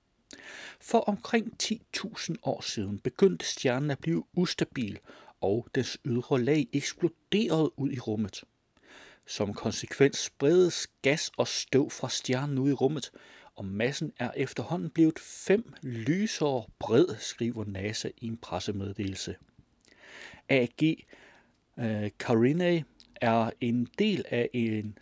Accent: native